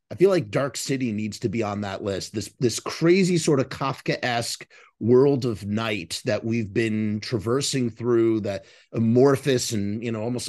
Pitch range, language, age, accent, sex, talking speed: 115-145 Hz, English, 30-49, American, male, 175 wpm